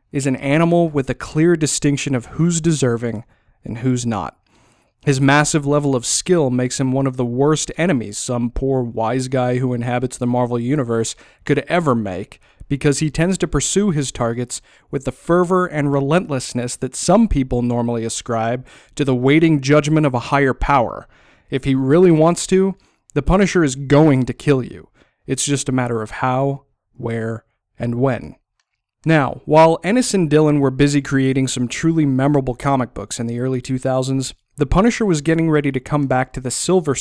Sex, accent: male, American